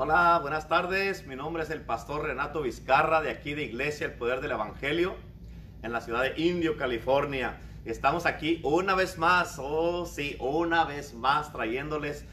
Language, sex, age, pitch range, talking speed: Spanish, male, 50-69, 120-155 Hz, 170 wpm